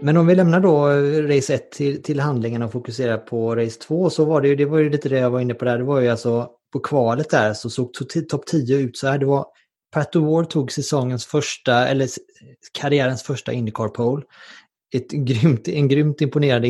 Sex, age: male, 30-49